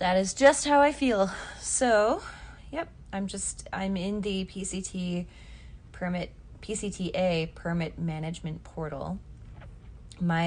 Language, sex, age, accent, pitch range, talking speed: English, female, 20-39, American, 155-195 Hz, 115 wpm